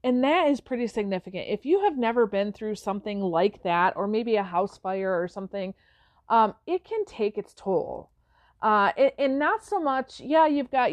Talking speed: 200 wpm